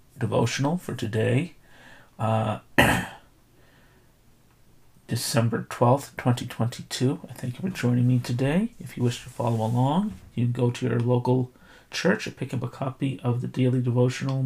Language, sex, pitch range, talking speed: English, male, 120-135 Hz, 155 wpm